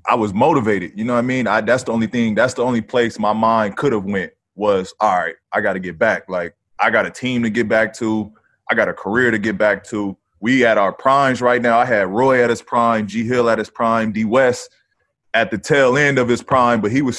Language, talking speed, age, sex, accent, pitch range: English, 260 wpm, 20-39, male, American, 105-125 Hz